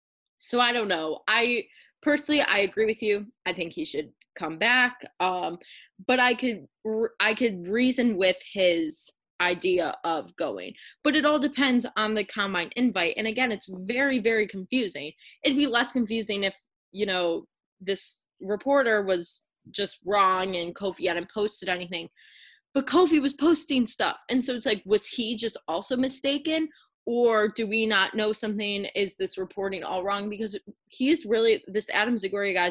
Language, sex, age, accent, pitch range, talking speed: English, female, 20-39, American, 180-235 Hz, 165 wpm